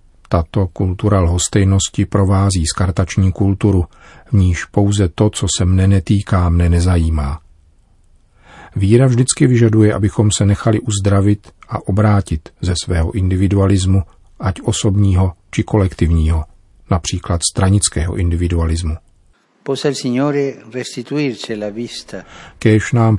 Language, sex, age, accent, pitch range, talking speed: Czech, male, 40-59, native, 90-105 Hz, 100 wpm